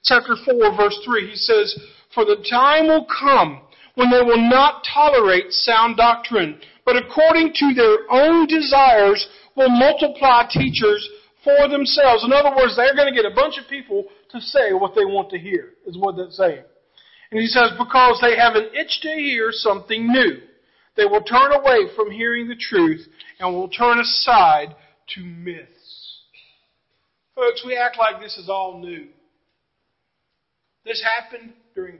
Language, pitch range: English, 210-290 Hz